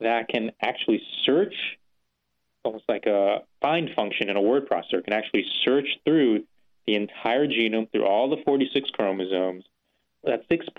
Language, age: English, 30-49